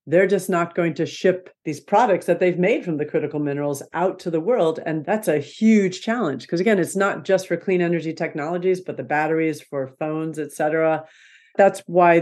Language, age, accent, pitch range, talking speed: English, 50-69, American, 150-185 Hz, 200 wpm